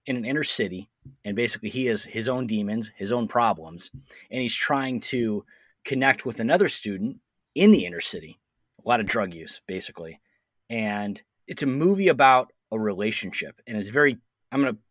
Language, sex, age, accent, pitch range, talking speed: English, male, 30-49, American, 110-145 Hz, 175 wpm